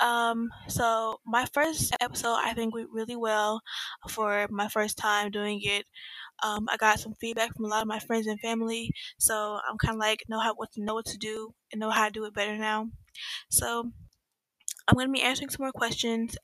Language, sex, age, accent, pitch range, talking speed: English, female, 10-29, American, 220-245 Hz, 210 wpm